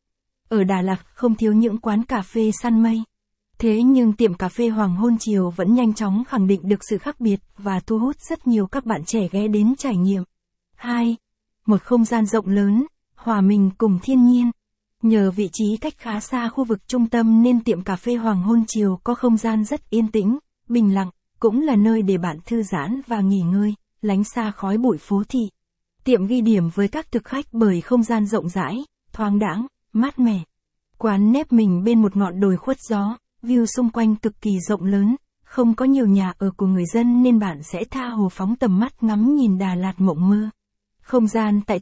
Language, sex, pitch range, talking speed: Vietnamese, female, 200-235 Hz, 215 wpm